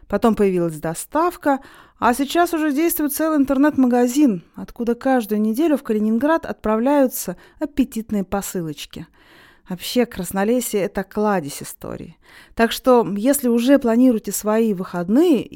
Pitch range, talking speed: 200-275 Hz, 110 wpm